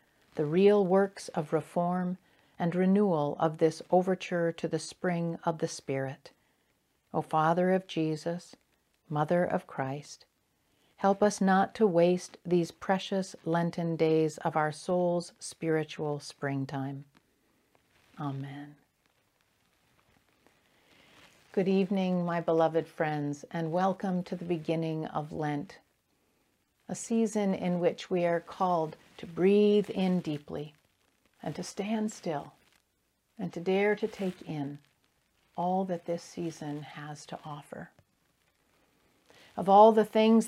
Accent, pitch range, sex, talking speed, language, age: American, 160-190 Hz, female, 120 wpm, English, 50-69